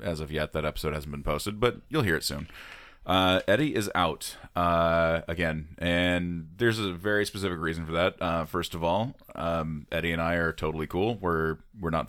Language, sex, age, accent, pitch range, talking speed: English, male, 30-49, American, 80-90 Hz, 205 wpm